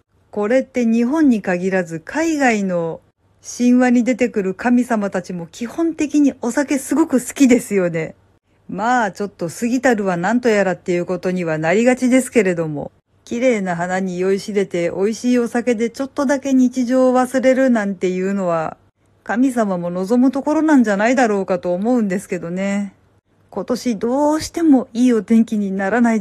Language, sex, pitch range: Japanese, female, 190-250 Hz